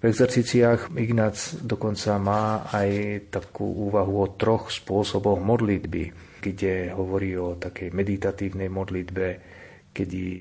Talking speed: 110 wpm